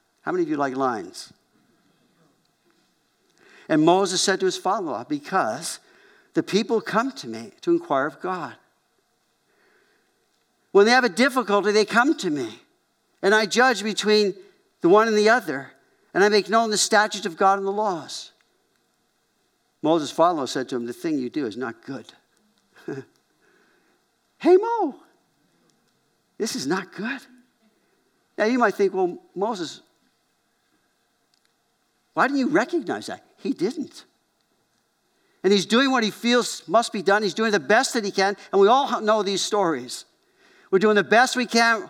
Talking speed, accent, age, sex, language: 160 wpm, American, 50-69, male, English